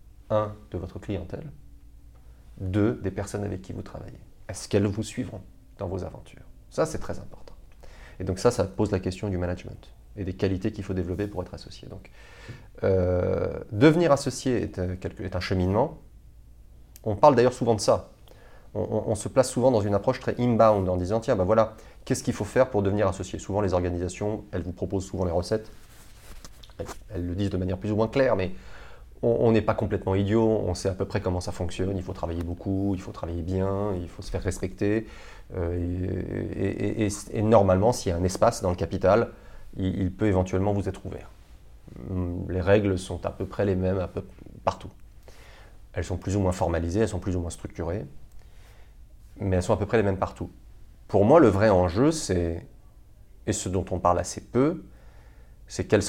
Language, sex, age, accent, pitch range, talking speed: French, male, 30-49, French, 90-110 Hz, 200 wpm